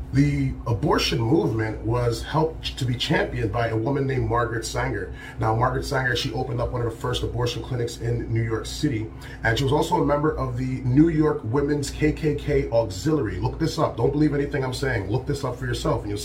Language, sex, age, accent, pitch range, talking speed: English, male, 30-49, American, 115-150 Hz, 215 wpm